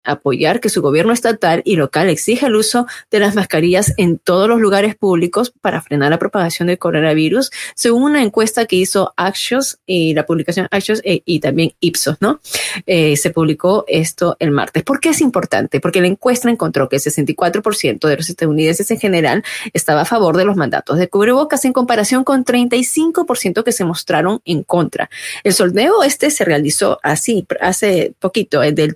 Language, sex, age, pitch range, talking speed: Spanish, female, 30-49, 155-205 Hz, 180 wpm